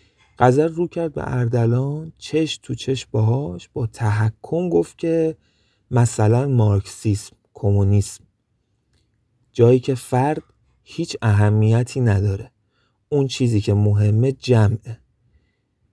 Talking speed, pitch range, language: 100 wpm, 105-135 Hz, Persian